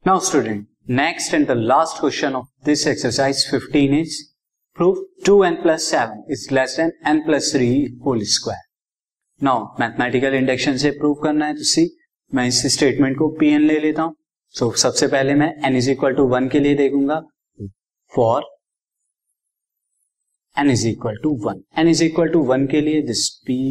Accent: native